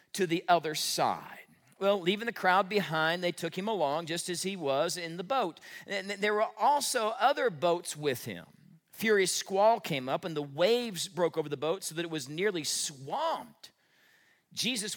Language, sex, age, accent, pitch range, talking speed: English, male, 40-59, American, 155-210 Hz, 185 wpm